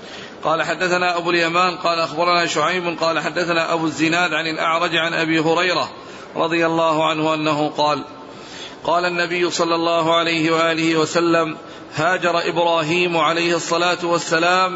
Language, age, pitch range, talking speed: Arabic, 40-59, 165-180 Hz, 135 wpm